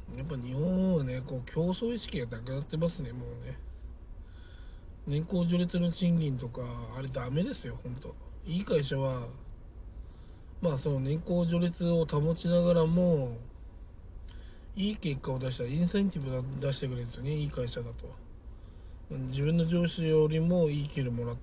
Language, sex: Japanese, male